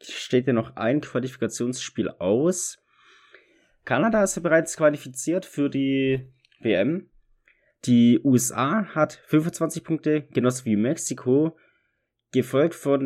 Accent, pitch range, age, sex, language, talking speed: German, 115-135 Hz, 30-49, male, German, 110 wpm